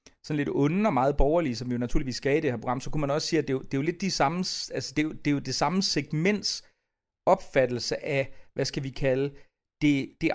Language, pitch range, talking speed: Danish, 130-165 Hz, 275 wpm